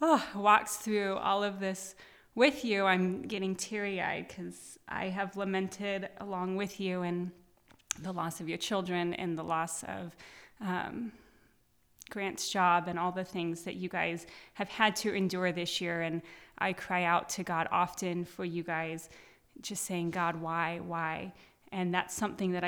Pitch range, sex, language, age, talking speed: 175-205 Hz, female, English, 20-39, 165 wpm